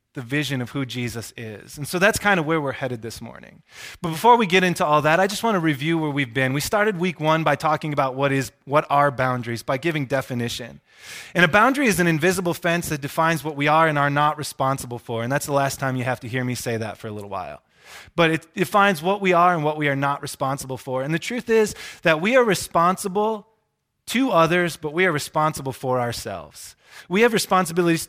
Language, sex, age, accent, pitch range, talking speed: English, male, 20-39, American, 140-185 Hz, 240 wpm